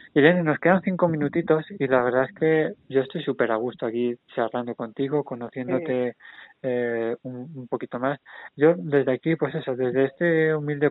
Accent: Spanish